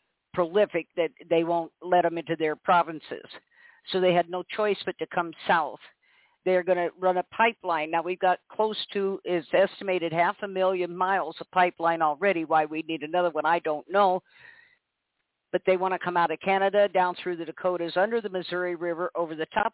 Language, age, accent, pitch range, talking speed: English, 50-69, American, 170-200 Hz, 200 wpm